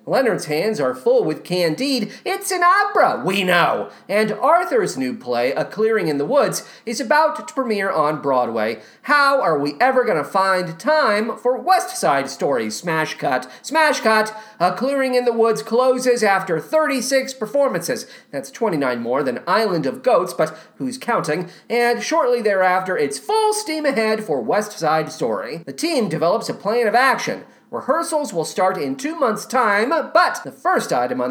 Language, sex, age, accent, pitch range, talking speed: English, male, 40-59, American, 175-275 Hz, 175 wpm